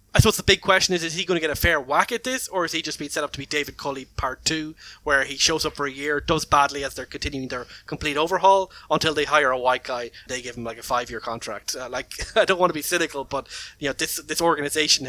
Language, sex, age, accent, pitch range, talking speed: English, male, 20-39, Irish, 135-160 Hz, 280 wpm